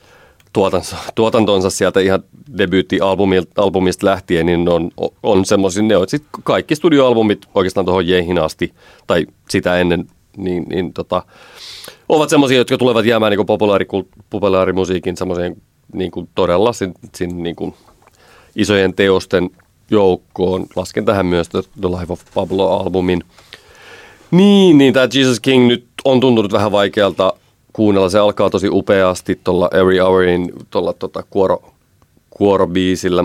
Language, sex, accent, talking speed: Finnish, male, native, 125 wpm